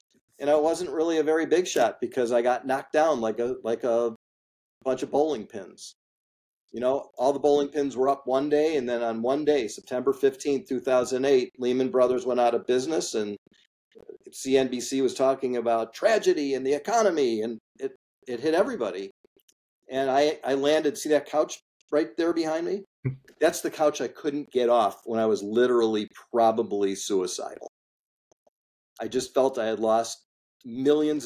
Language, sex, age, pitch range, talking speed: English, male, 40-59, 115-150 Hz, 185 wpm